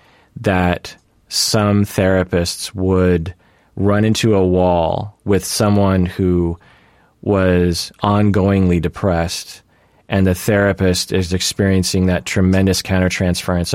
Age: 30-49